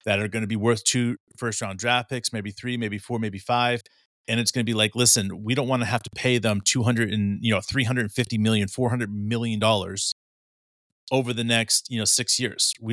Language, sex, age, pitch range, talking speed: English, male, 30-49, 110-130 Hz, 225 wpm